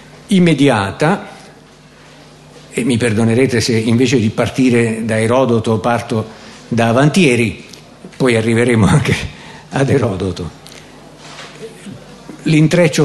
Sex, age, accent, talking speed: male, 50-69, native, 85 wpm